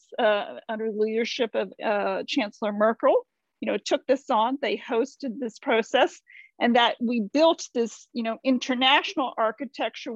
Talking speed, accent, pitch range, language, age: 155 wpm, American, 225-280 Hz, English, 40-59